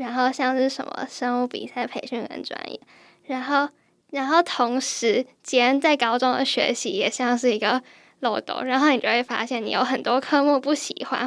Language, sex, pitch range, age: Chinese, female, 245-295 Hz, 10-29